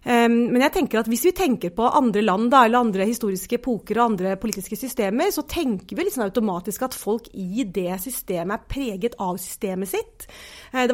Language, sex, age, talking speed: English, female, 30-49, 190 wpm